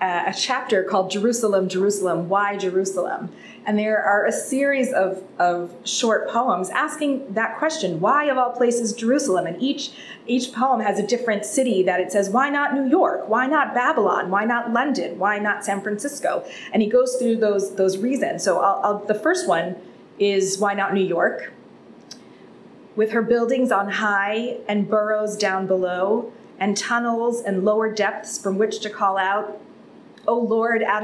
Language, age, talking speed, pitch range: English, 30-49, 175 wpm, 200-250 Hz